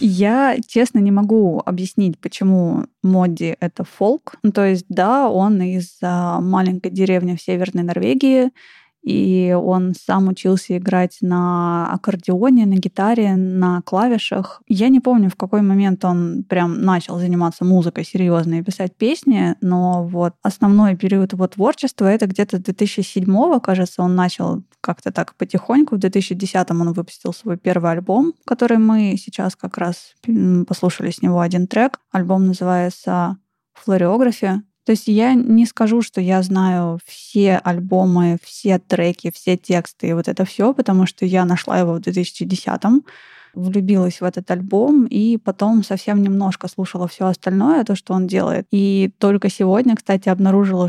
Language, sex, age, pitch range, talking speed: Russian, female, 20-39, 180-210 Hz, 150 wpm